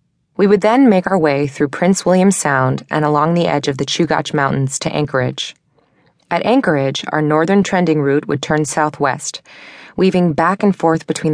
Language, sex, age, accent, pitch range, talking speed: English, female, 20-39, American, 145-185 Hz, 180 wpm